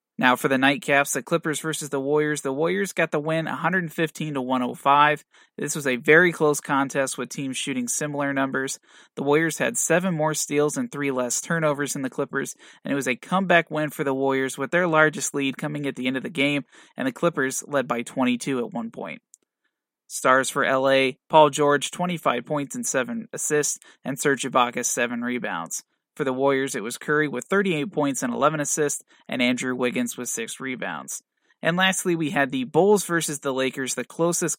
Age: 20-39